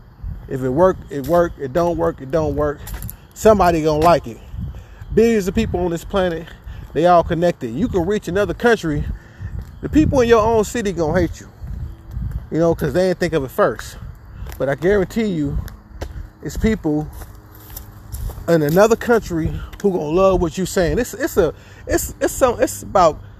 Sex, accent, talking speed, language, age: male, American, 180 wpm, English, 20-39